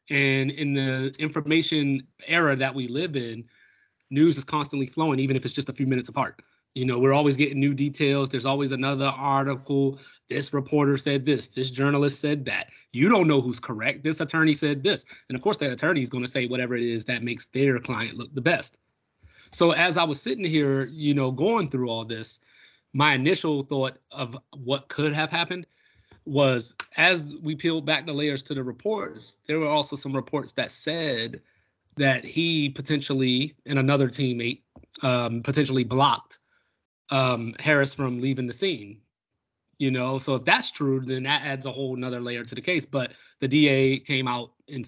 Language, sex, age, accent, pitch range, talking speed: English, male, 30-49, American, 130-150 Hz, 190 wpm